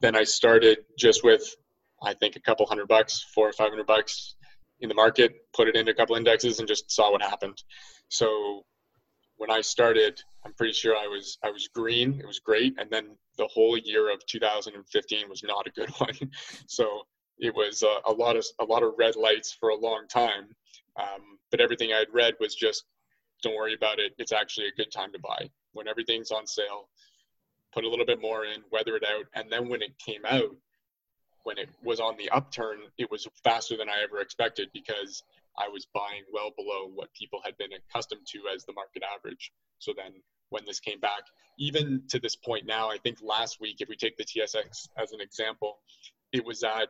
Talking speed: 210 wpm